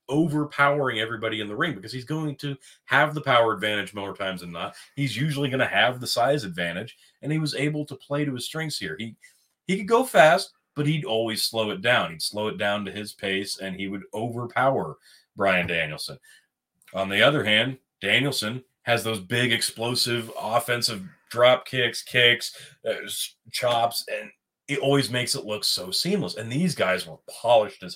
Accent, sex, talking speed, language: American, male, 190 wpm, English